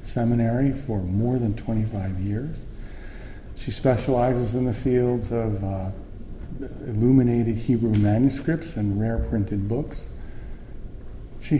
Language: English